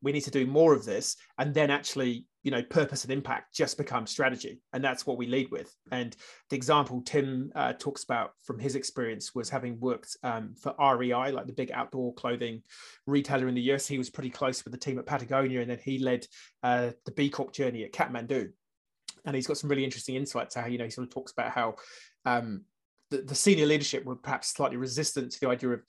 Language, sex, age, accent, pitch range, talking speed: English, male, 30-49, British, 125-145 Hz, 225 wpm